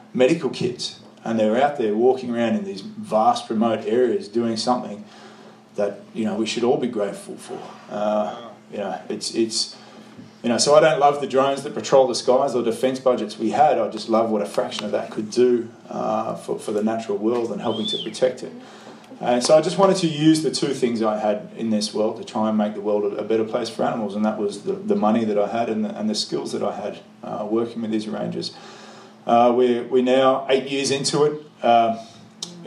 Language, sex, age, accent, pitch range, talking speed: English, male, 20-39, Australian, 110-125 Hz, 230 wpm